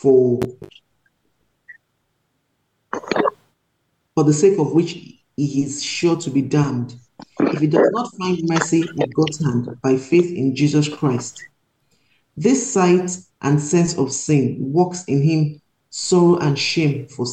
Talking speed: 135 wpm